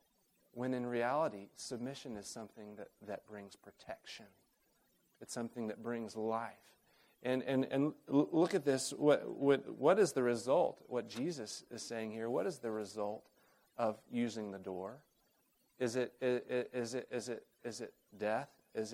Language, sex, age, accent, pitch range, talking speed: English, male, 40-59, American, 110-130 Hz, 160 wpm